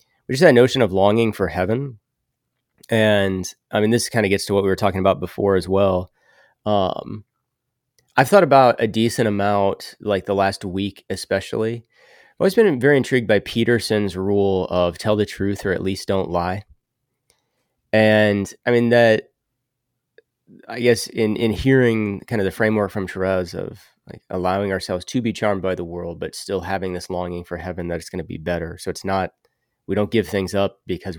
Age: 30-49